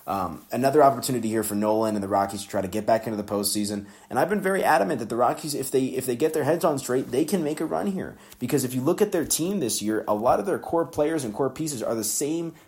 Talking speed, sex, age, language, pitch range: 290 wpm, male, 30-49, English, 105-145 Hz